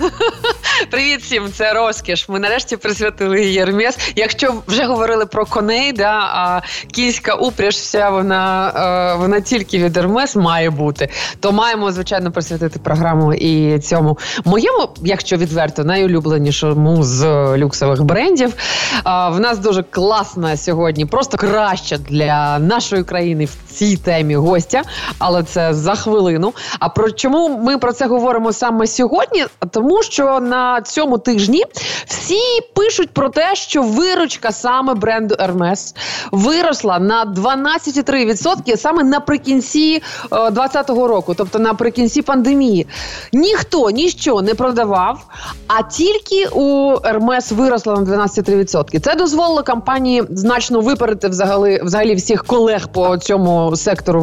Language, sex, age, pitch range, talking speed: Ukrainian, female, 20-39, 180-255 Hz, 130 wpm